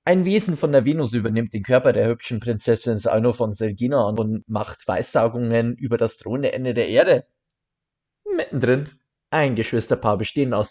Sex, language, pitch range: male, German, 110-135 Hz